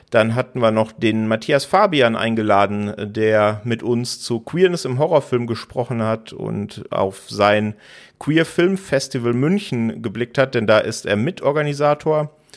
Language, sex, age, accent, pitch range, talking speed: German, male, 40-59, German, 110-130 Hz, 140 wpm